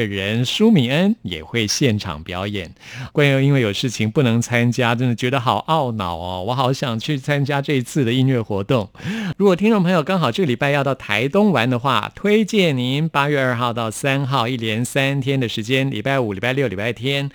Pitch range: 110-150 Hz